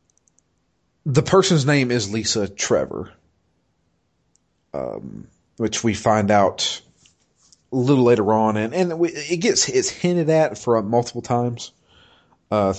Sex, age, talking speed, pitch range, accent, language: male, 30-49, 130 wpm, 90-120 Hz, American, English